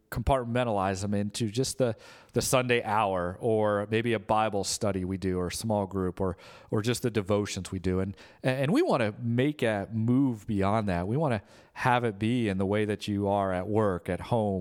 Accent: American